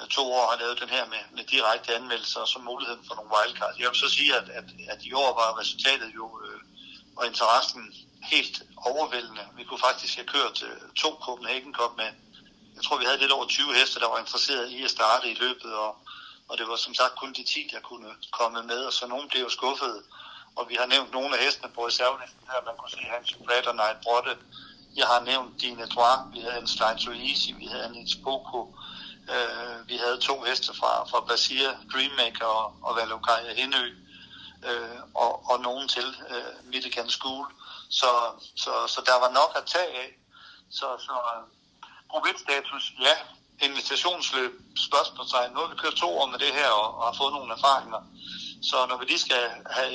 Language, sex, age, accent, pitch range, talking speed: Danish, male, 60-79, native, 115-130 Hz, 205 wpm